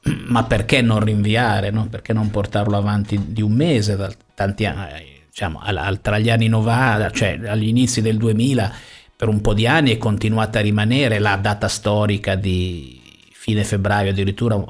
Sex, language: male, Italian